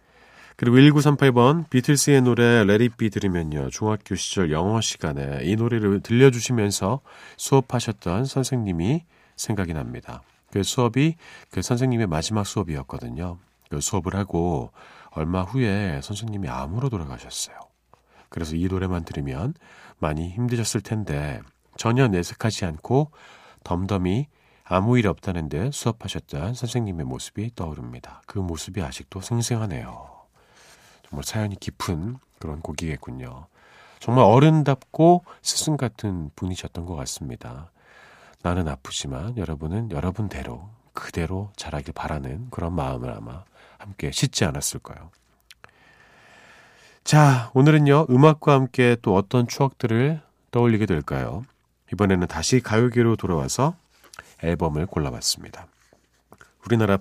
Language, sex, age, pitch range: Korean, male, 40-59, 85-125 Hz